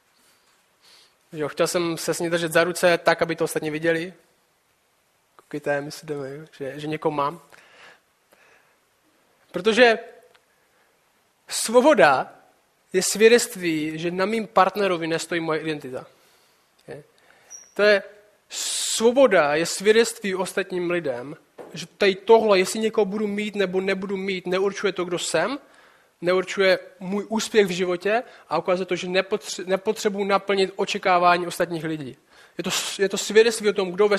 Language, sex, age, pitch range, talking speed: Czech, male, 20-39, 175-220 Hz, 135 wpm